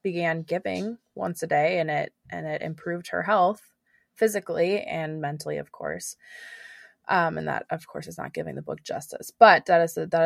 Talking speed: 195 wpm